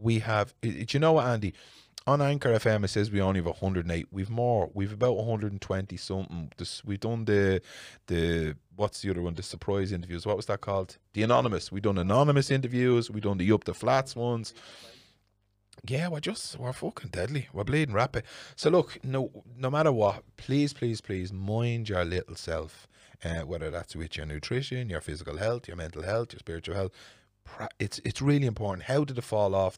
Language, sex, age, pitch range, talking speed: English, male, 30-49, 90-115 Hz, 195 wpm